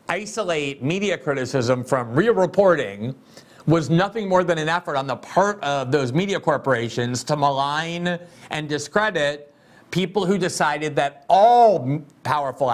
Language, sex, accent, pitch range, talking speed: English, male, American, 130-180 Hz, 135 wpm